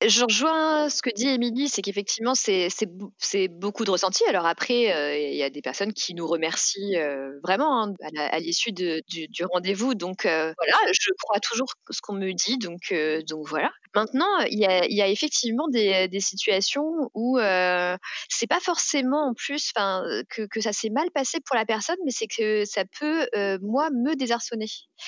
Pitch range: 195-265 Hz